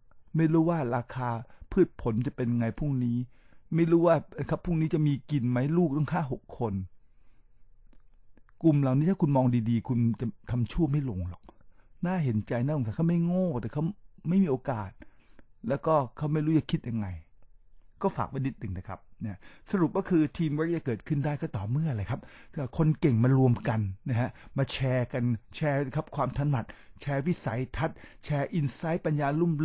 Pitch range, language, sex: 120-165 Hz, English, male